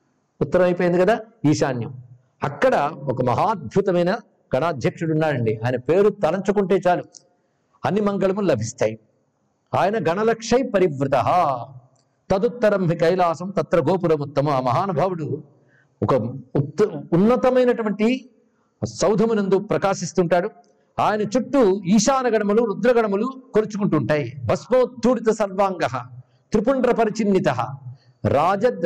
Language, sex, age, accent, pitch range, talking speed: Telugu, male, 60-79, native, 145-205 Hz, 85 wpm